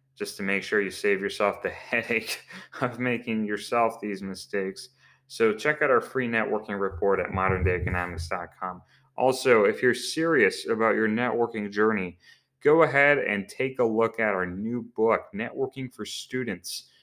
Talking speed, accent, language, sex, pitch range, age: 155 wpm, American, English, male, 100-125 Hz, 30-49